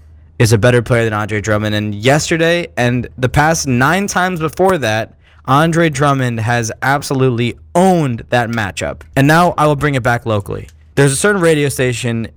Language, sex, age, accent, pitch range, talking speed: English, male, 20-39, American, 100-140 Hz, 175 wpm